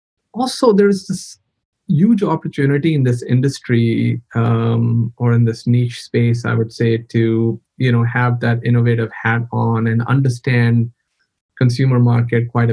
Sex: male